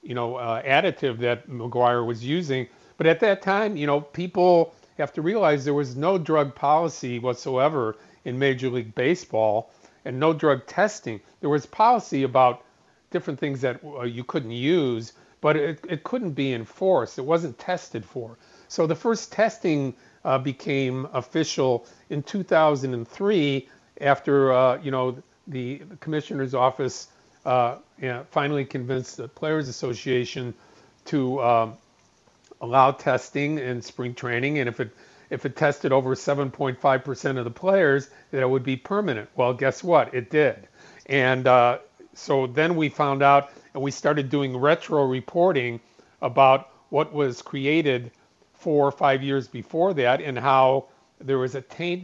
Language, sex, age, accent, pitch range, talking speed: English, male, 50-69, American, 125-155 Hz, 150 wpm